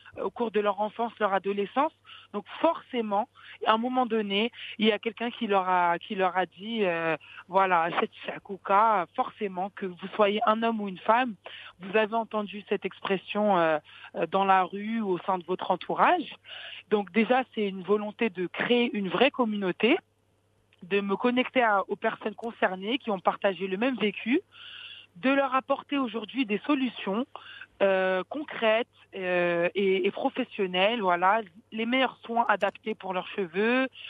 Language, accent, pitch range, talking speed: English, French, 190-230 Hz, 165 wpm